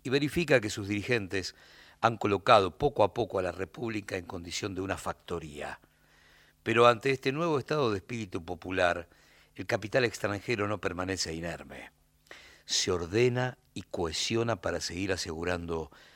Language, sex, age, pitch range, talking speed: Spanish, male, 60-79, 85-115 Hz, 145 wpm